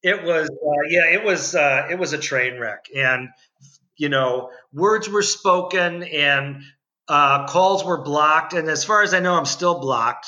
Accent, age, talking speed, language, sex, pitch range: American, 50-69, 185 wpm, English, male, 145-175 Hz